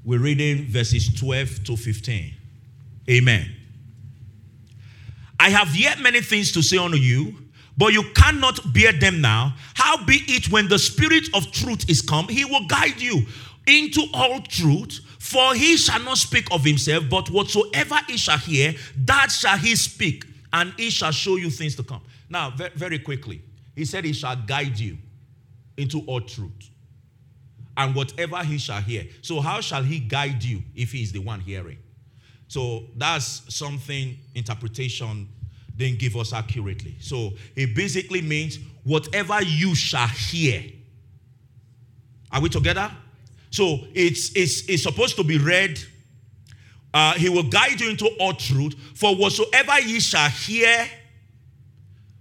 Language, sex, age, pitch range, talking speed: English, male, 40-59, 120-170 Hz, 150 wpm